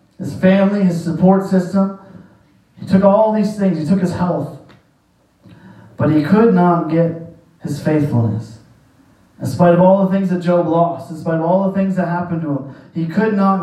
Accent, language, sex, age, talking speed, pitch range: American, English, male, 30-49, 190 wpm, 150-180 Hz